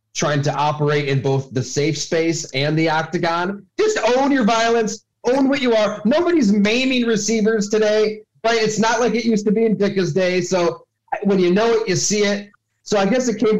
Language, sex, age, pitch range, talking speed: English, male, 30-49, 150-205 Hz, 210 wpm